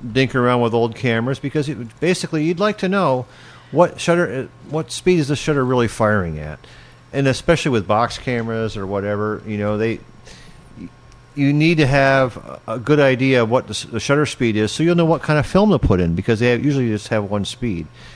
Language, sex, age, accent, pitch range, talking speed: English, male, 50-69, American, 115-150 Hz, 210 wpm